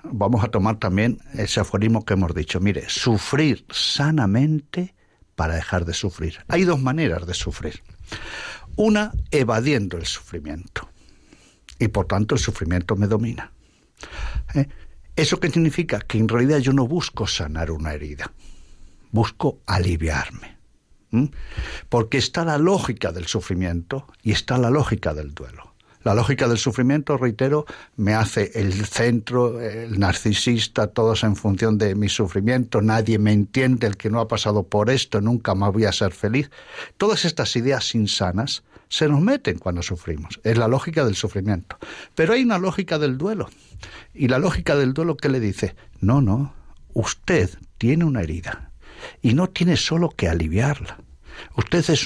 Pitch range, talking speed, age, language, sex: 100-135 Hz, 155 wpm, 60-79, Spanish, male